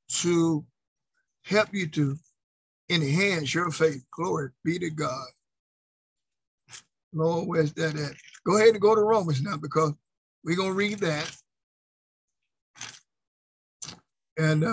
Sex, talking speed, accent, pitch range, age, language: male, 115 wpm, American, 145-180 Hz, 50-69, English